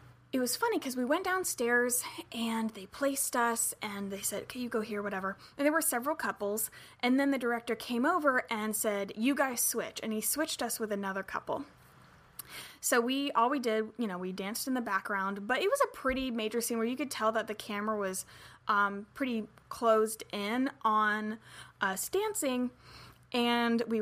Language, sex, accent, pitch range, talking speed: English, female, American, 205-260 Hz, 195 wpm